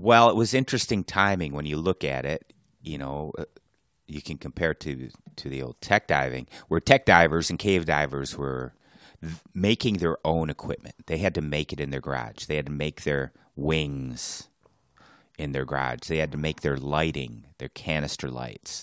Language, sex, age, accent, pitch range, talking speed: English, male, 30-49, American, 70-85 Hz, 190 wpm